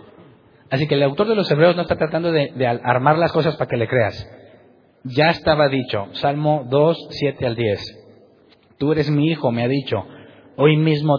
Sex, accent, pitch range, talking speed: male, Mexican, 120-150 Hz, 195 wpm